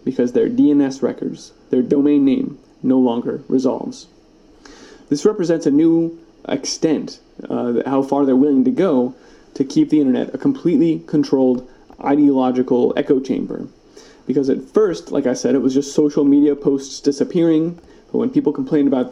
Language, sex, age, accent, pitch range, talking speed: English, male, 30-49, American, 135-190 Hz, 155 wpm